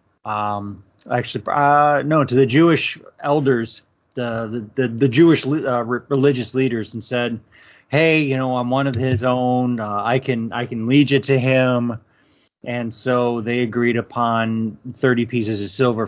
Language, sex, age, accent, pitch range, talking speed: English, male, 30-49, American, 105-125 Hz, 170 wpm